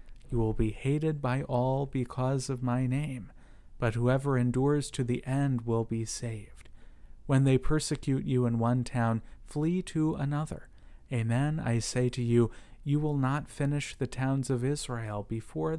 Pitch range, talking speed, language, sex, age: 110-130 Hz, 165 wpm, English, male, 40-59